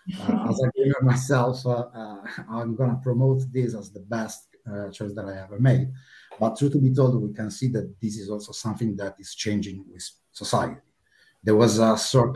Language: Romanian